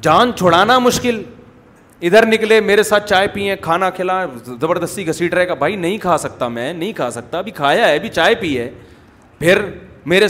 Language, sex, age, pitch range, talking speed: Urdu, male, 40-59, 180-245 Hz, 185 wpm